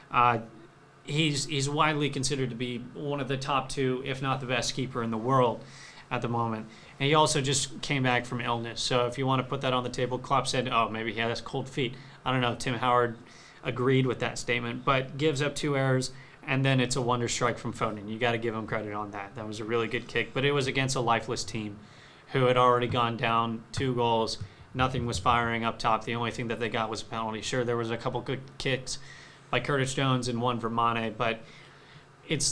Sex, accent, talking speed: male, American, 235 wpm